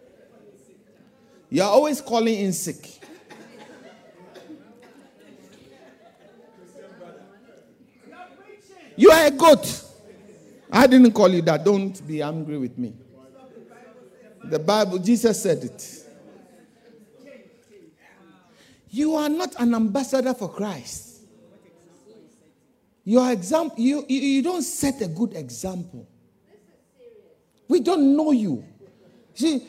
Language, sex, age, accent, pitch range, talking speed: English, male, 50-69, Nigerian, 190-275 Hz, 95 wpm